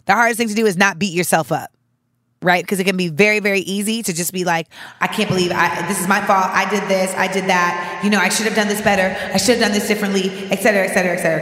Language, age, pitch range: English, 20-39, 170-215 Hz